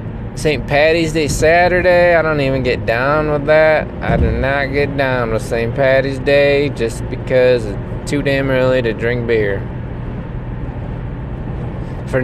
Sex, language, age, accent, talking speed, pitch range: male, English, 20-39, American, 145 wpm, 115-150 Hz